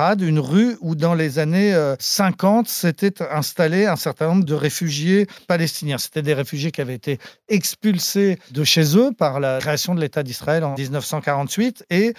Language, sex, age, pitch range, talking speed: French, male, 40-59, 145-195 Hz, 165 wpm